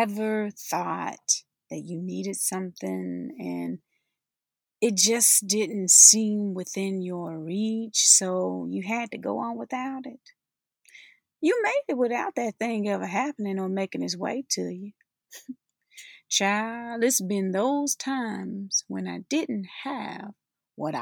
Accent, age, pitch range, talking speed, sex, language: American, 30-49, 180-245 Hz, 130 wpm, female, English